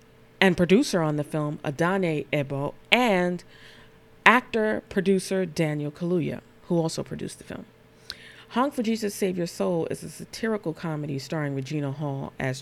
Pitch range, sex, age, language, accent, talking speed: 145-190 Hz, female, 40-59, English, American, 145 wpm